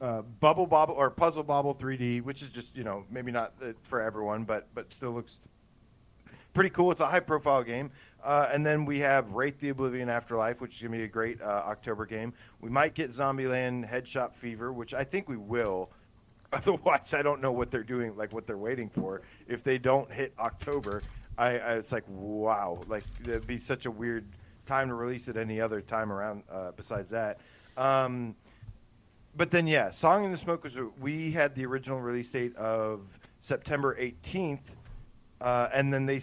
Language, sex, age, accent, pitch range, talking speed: English, male, 40-59, American, 110-135 Hz, 195 wpm